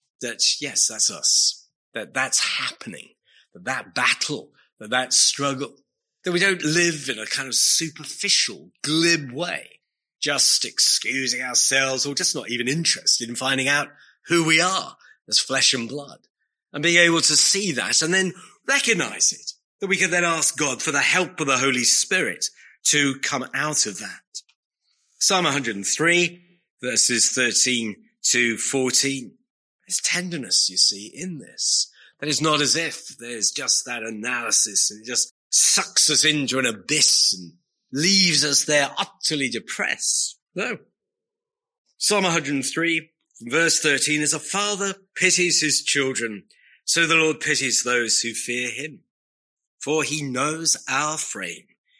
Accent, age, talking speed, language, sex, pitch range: British, 30-49, 150 wpm, English, male, 130-175 Hz